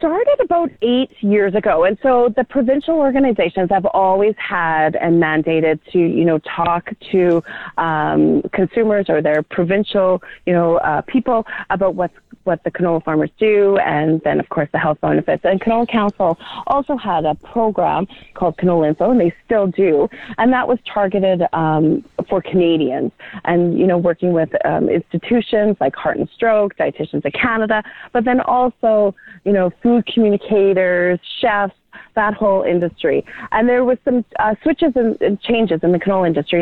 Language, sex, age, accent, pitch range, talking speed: English, female, 30-49, American, 170-215 Hz, 165 wpm